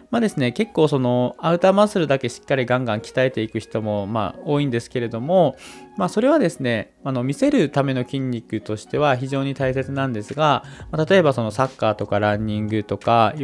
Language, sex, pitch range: Japanese, male, 110-150 Hz